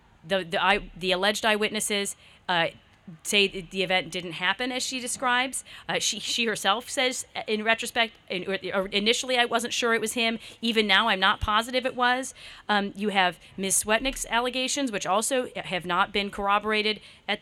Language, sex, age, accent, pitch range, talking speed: English, female, 40-59, American, 190-240 Hz, 170 wpm